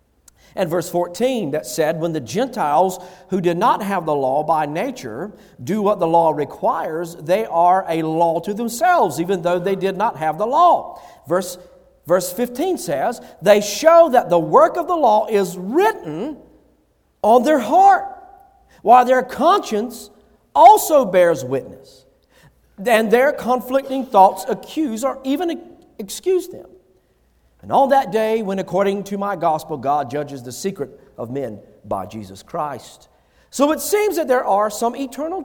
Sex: male